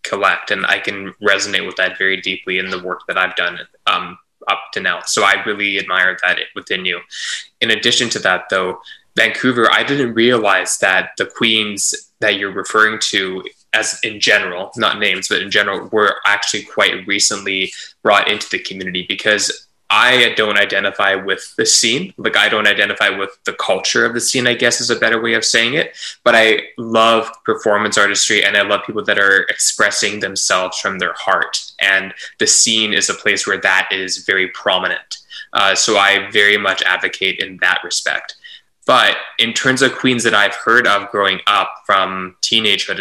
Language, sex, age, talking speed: English, male, 20-39, 185 wpm